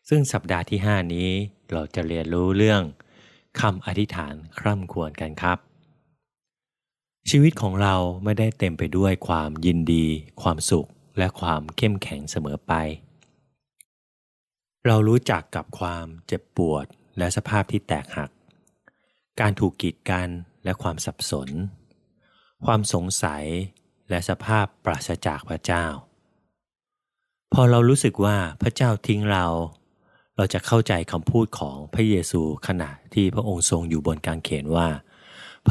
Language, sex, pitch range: Thai, male, 85-110 Hz